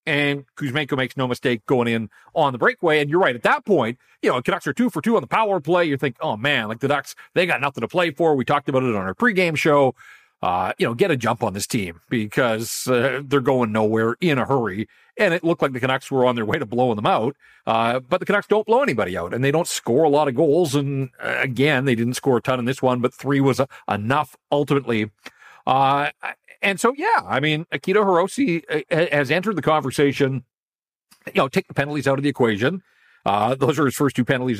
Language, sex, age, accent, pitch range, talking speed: English, male, 40-59, American, 130-185 Hz, 245 wpm